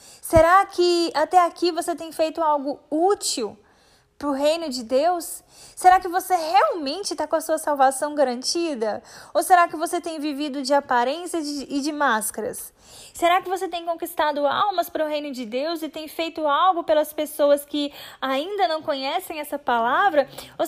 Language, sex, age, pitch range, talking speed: Portuguese, female, 10-29, 275-335 Hz, 175 wpm